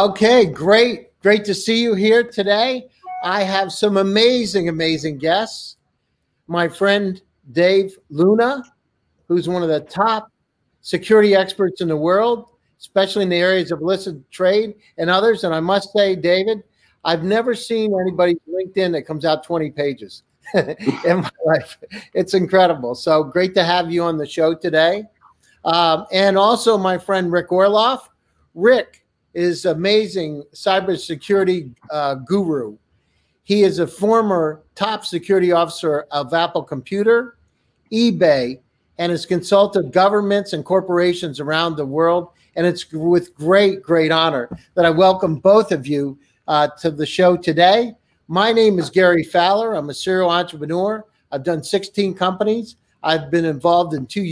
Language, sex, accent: English, male, American